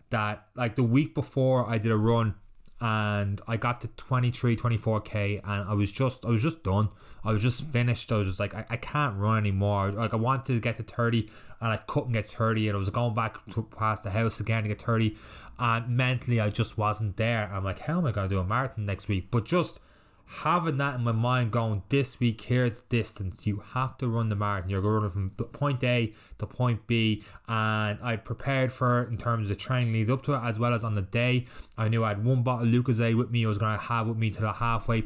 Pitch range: 105-120 Hz